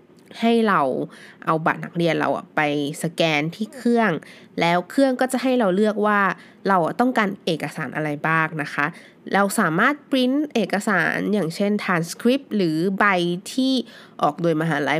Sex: female